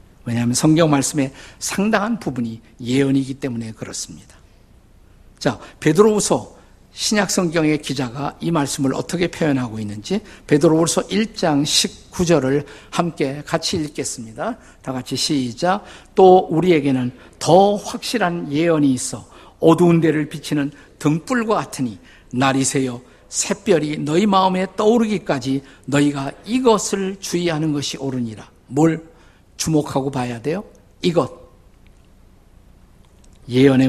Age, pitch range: 50-69, 120-170 Hz